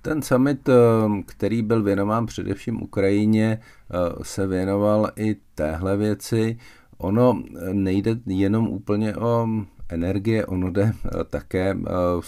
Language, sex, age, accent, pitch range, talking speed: Czech, male, 50-69, native, 85-100 Hz, 110 wpm